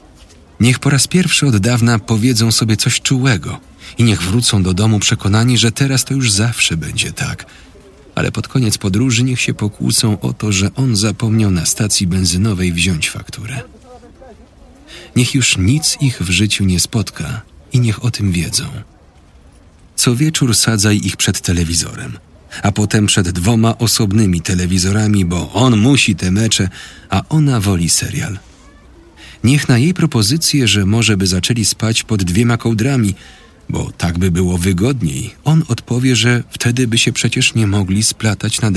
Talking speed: 160 wpm